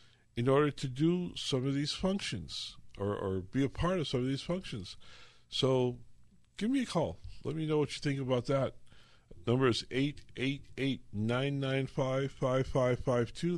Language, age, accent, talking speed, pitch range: English, 50-69, American, 150 wpm, 105-135 Hz